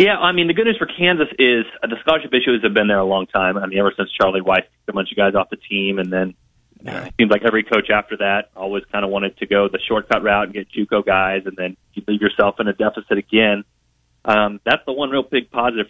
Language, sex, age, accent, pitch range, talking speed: English, male, 30-49, American, 100-130 Hz, 265 wpm